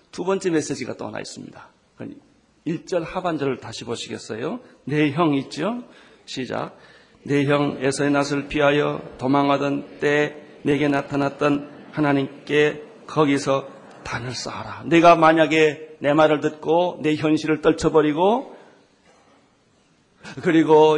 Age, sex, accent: 40-59, male, native